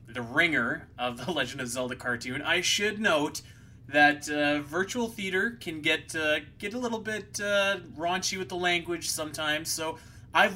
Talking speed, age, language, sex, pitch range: 170 wpm, 20-39, English, male, 120-165 Hz